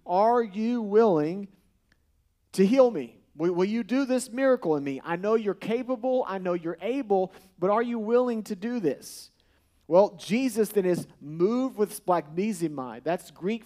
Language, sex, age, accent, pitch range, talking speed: English, male, 40-59, American, 165-245 Hz, 165 wpm